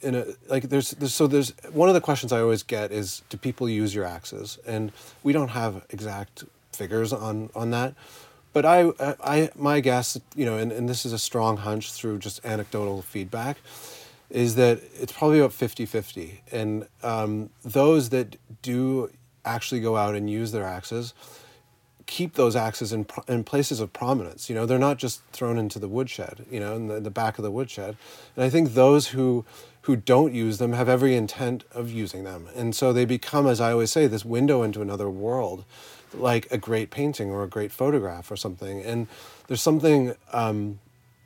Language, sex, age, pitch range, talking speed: English, male, 30-49, 105-130 Hz, 195 wpm